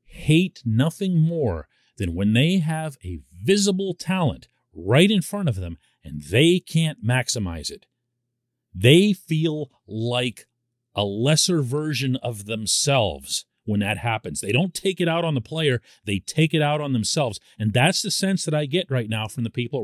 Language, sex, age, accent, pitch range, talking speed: English, male, 40-59, American, 110-165 Hz, 170 wpm